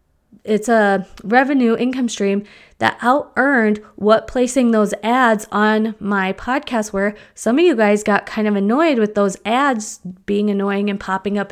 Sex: female